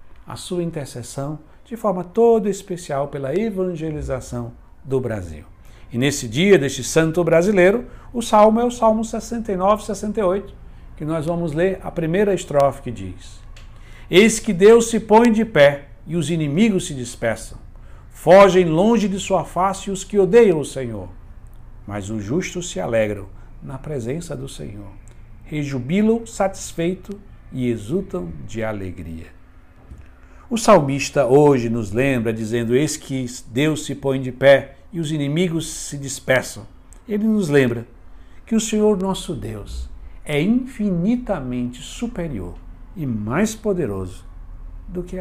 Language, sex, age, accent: Portuguese, male, 60-79, Brazilian